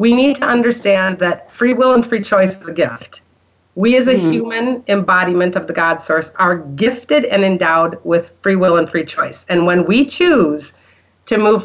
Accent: American